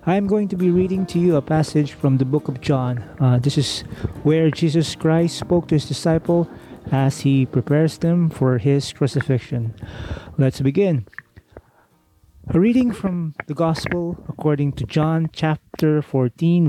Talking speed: 160 wpm